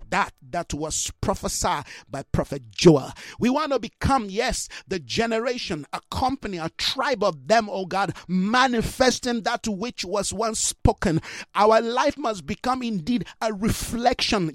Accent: Nigerian